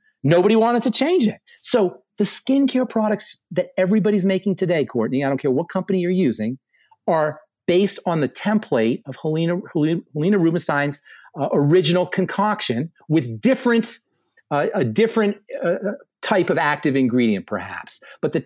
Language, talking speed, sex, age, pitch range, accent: English, 145 wpm, male, 40-59, 150-225 Hz, American